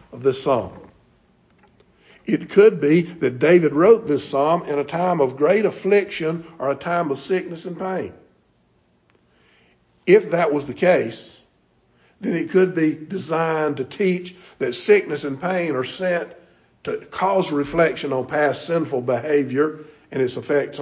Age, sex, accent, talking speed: 50-69, male, American, 150 wpm